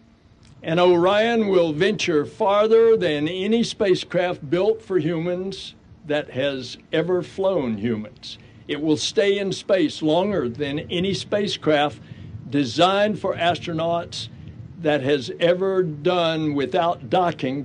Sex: male